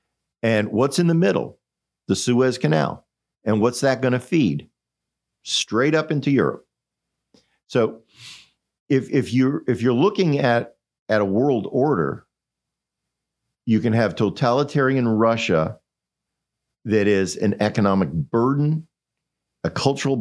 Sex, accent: male, American